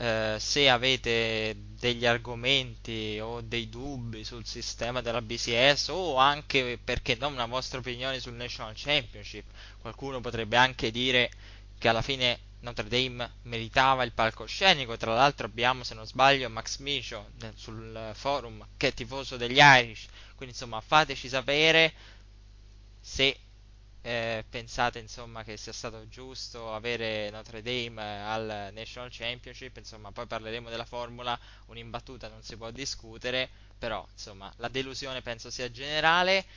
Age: 20-39